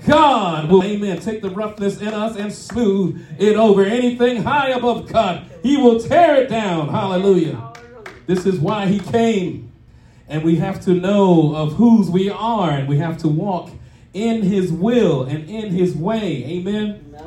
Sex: male